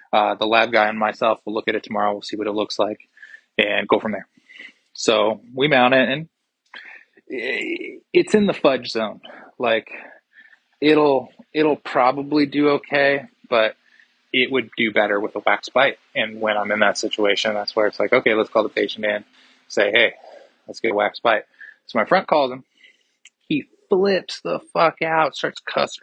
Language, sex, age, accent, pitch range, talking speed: English, male, 20-39, American, 105-155 Hz, 185 wpm